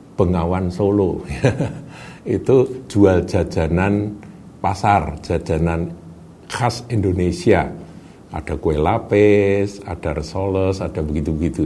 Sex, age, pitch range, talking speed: male, 50-69, 85-110 Hz, 80 wpm